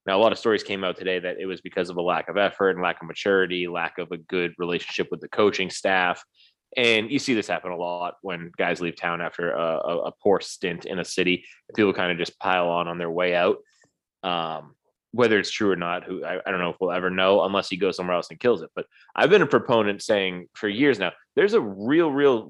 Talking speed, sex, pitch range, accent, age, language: 255 wpm, male, 90-120 Hz, American, 20-39, English